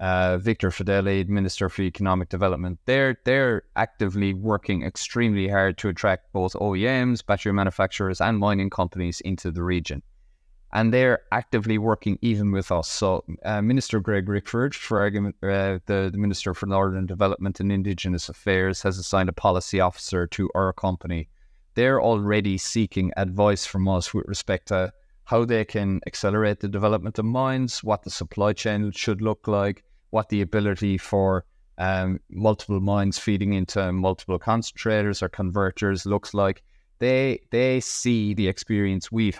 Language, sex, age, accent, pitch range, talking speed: English, male, 20-39, Irish, 95-105 Hz, 155 wpm